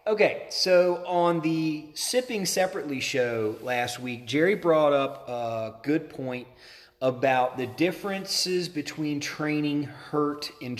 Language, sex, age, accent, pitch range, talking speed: English, male, 30-49, American, 120-155 Hz, 120 wpm